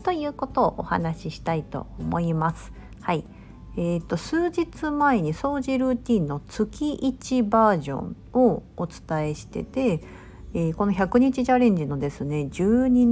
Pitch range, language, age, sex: 160-250 Hz, Japanese, 50-69, female